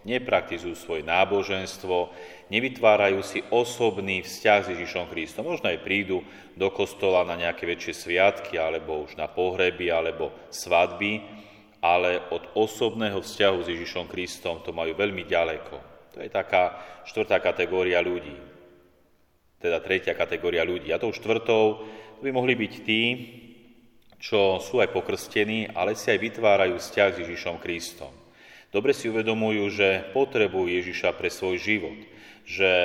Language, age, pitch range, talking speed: Slovak, 30-49, 90-110 Hz, 135 wpm